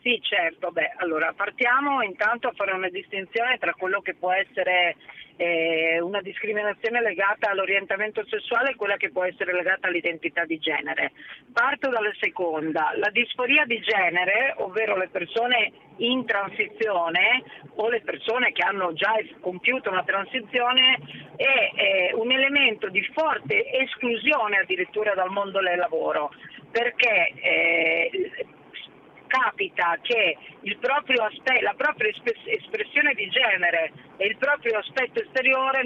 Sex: female